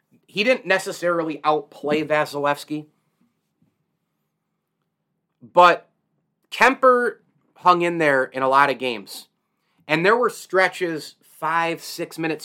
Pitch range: 140-170 Hz